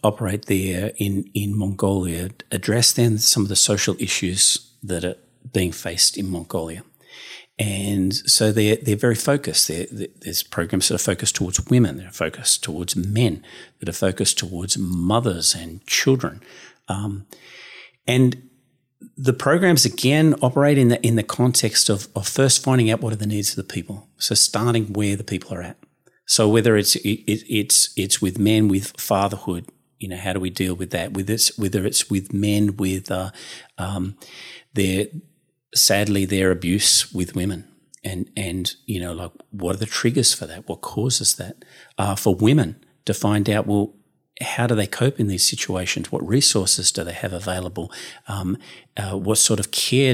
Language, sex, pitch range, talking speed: English, male, 95-120 Hz, 175 wpm